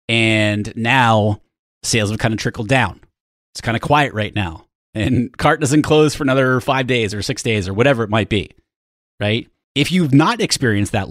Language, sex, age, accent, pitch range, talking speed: English, male, 30-49, American, 100-135 Hz, 195 wpm